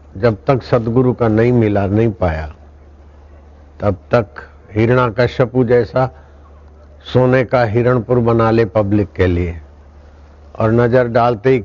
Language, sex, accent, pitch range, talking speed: Hindi, male, native, 75-120 Hz, 130 wpm